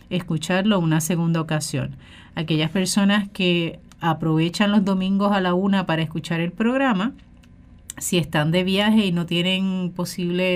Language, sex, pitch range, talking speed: Spanish, female, 170-215 Hz, 140 wpm